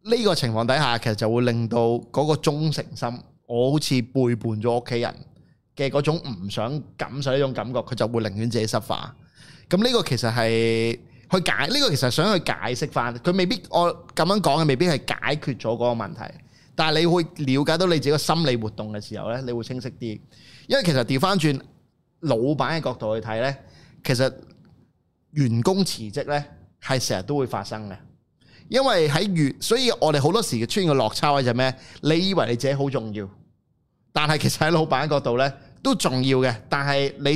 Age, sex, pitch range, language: 20-39, male, 120-155 Hz, Chinese